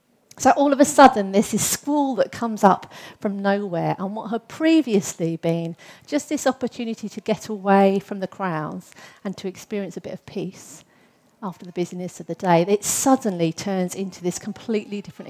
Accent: British